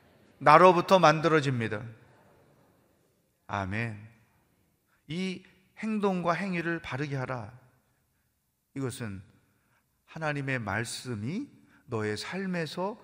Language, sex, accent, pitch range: Korean, male, native, 125-175 Hz